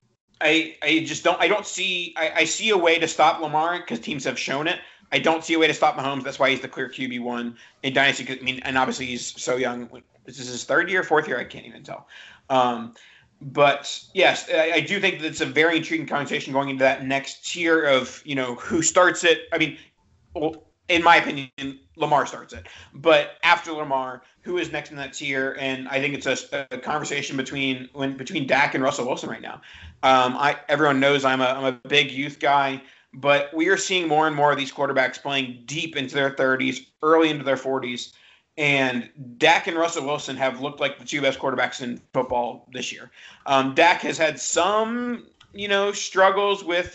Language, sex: English, male